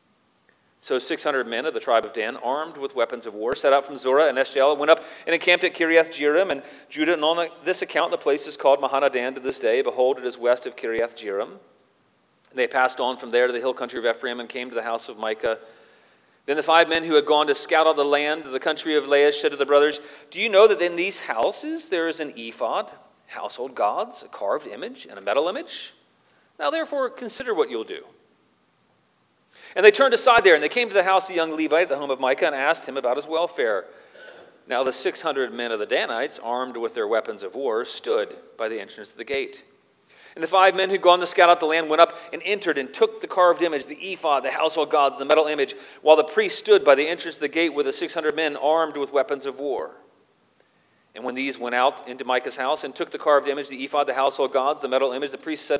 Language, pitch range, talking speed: English, 140-205 Hz, 245 wpm